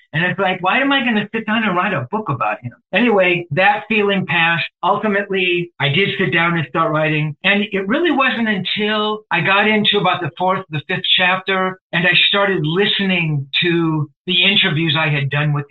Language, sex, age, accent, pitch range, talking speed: English, male, 50-69, American, 150-190 Hz, 205 wpm